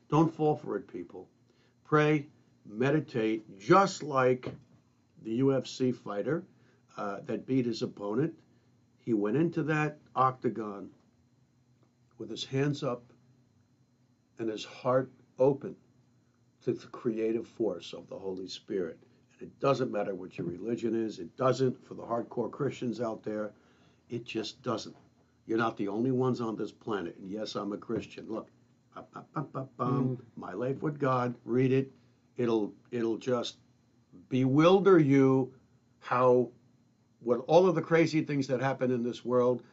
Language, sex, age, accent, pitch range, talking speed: English, male, 60-79, American, 120-135 Hz, 140 wpm